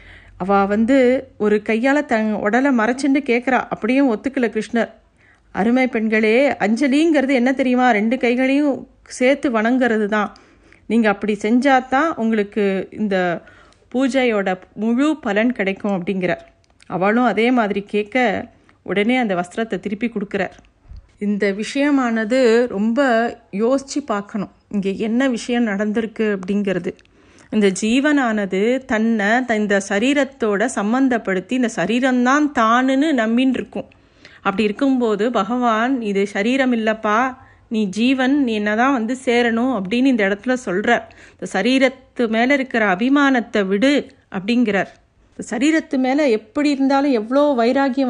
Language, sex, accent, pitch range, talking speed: Tamil, female, native, 205-260 Hz, 110 wpm